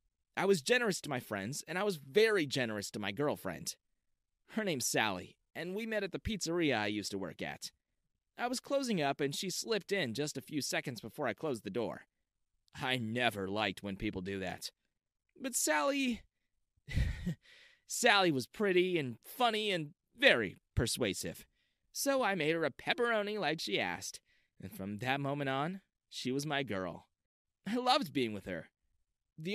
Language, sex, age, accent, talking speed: English, male, 30-49, American, 175 wpm